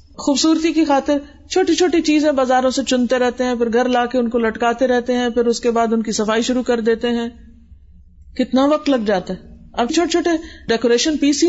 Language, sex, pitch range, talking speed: Urdu, female, 200-265 Hz, 225 wpm